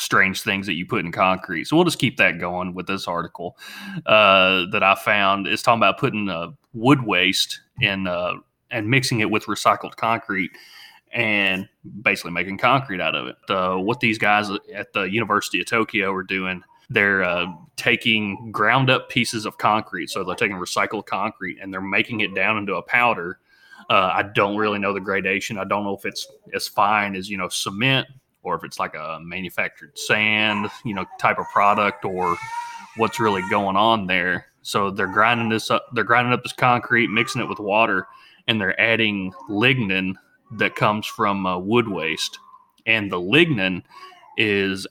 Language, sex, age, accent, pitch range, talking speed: English, male, 30-49, American, 95-120 Hz, 185 wpm